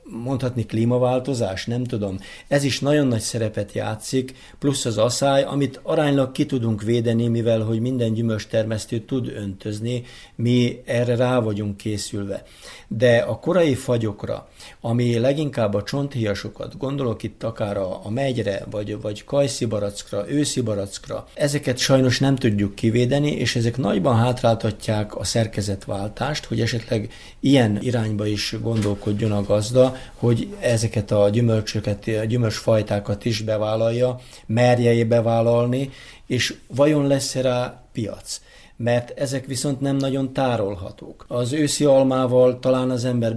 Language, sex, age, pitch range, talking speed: Hungarian, male, 50-69, 105-125 Hz, 125 wpm